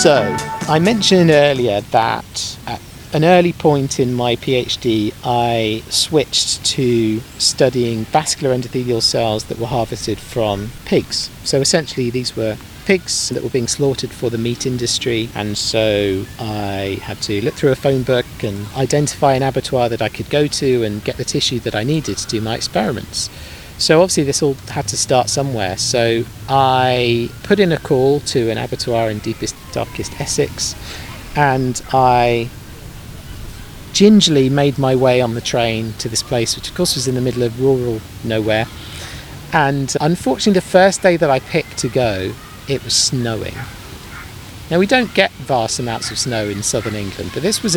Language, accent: English, British